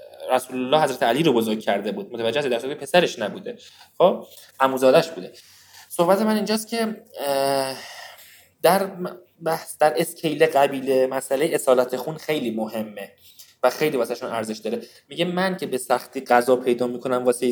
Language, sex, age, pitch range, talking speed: Persian, male, 20-39, 125-185 Hz, 150 wpm